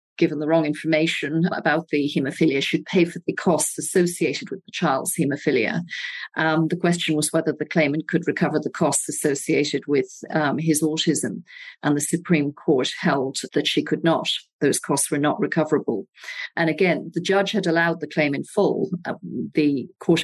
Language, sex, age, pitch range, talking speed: English, female, 40-59, 150-170 Hz, 180 wpm